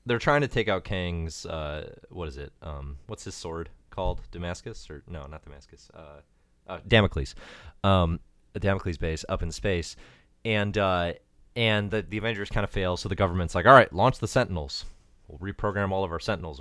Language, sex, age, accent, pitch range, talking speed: English, male, 30-49, American, 75-105 Hz, 195 wpm